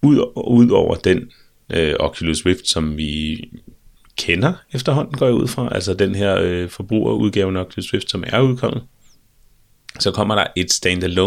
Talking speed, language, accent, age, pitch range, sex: 155 wpm, Danish, native, 30-49, 80-105 Hz, male